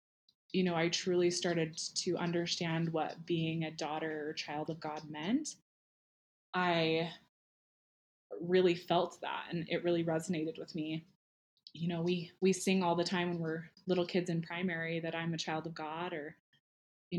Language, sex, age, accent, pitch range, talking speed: English, female, 20-39, American, 160-180 Hz, 170 wpm